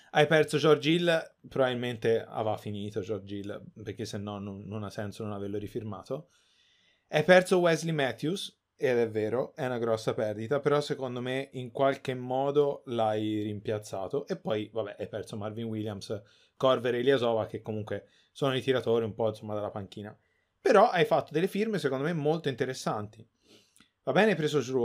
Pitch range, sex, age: 110-140 Hz, male, 30-49